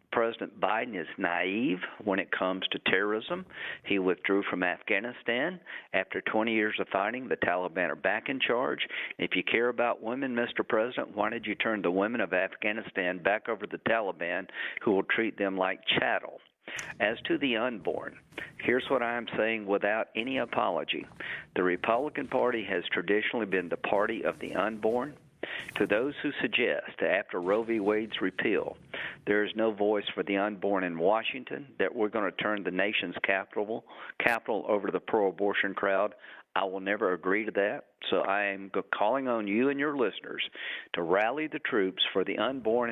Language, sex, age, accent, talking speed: English, male, 50-69, American, 180 wpm